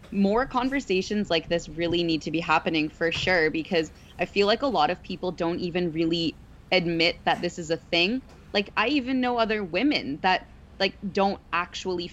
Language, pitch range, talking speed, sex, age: English, 155-185 Hz, 190 wpm, female, 20-39